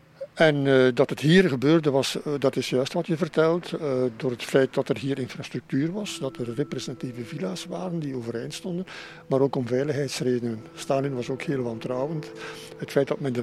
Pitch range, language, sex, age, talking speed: 125-160 Hz, Dutch, male, 60-79, 200 wpm